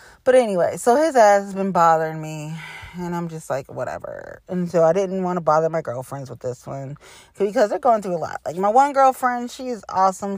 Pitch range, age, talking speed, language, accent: 155-200 Hz, 30-49, 220 wpm, English, American